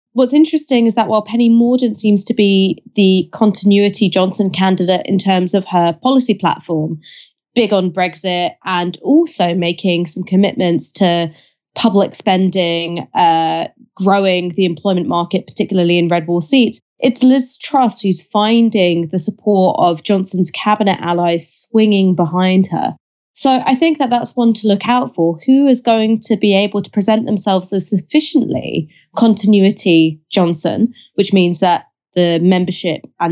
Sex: female